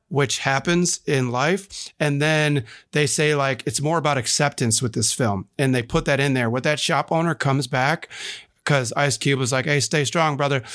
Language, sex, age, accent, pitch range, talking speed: English, male, 30-49, American, 125-150 Hz, 205 wpm